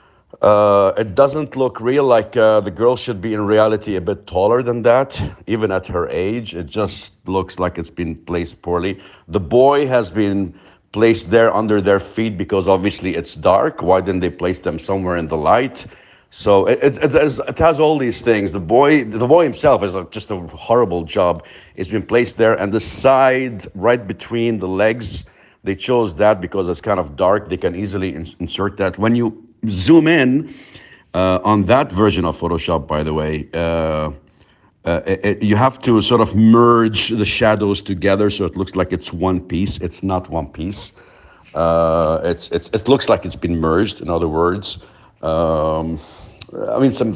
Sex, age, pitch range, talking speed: male, 50-69, 90-110 Hz, 190 wpm